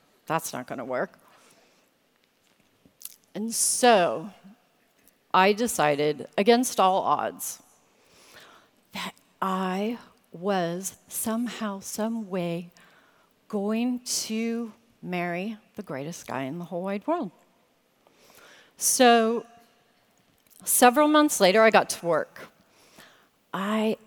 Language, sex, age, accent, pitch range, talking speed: English, female, 40-59, American, 180-225 Hz, 95 wpm